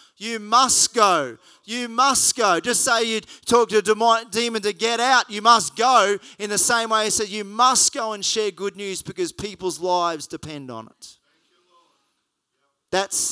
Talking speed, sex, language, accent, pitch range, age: 180 wpm, male, English, Australian, 170-215 Hz, 30-49